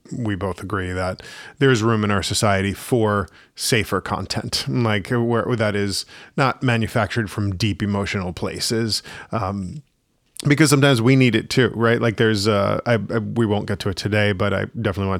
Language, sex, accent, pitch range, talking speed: English, male, American, 100-125 Hz, 180 wpm